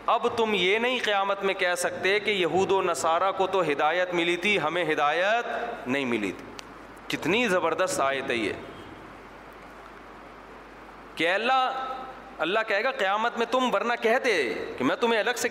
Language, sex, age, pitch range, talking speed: Urdu, male, 40-59, 175-235 Hz, 165 wpm